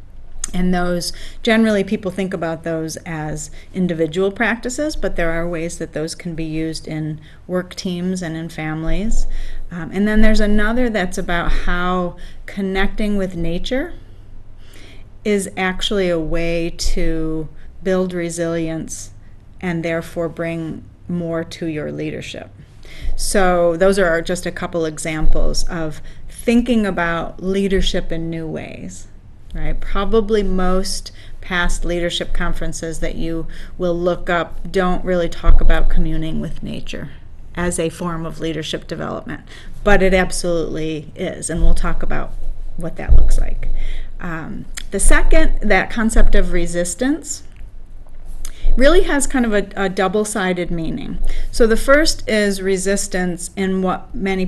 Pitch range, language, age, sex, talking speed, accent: 160-195 Hz, English, 30-49, female, 135 wpm, American